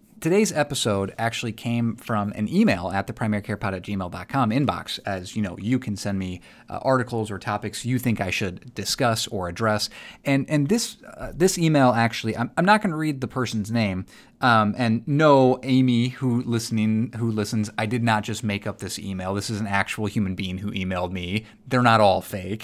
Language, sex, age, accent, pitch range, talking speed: English, male, 30-49, American, 105-150 Hz, 195 wpm